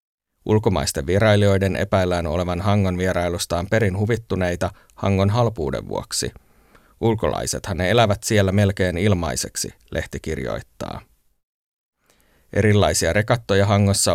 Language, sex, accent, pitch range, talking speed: Finnish, male, native, 90-105 Hz, 95 wpm